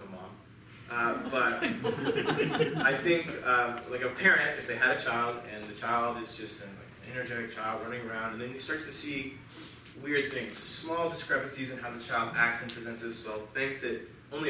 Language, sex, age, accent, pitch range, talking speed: English, male, 20-39, American, 115-135 Hz, 190 wpm